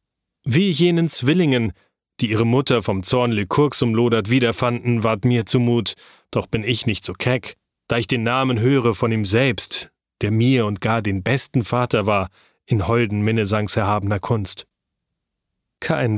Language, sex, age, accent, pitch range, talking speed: German, male, 40-59, German, 105-125 Hz, 155 wpm